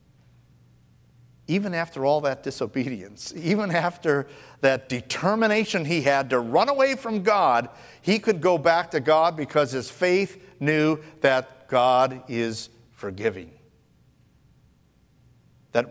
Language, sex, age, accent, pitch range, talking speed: English, male, 50-69, American, 110-150 Hz, 115 wpm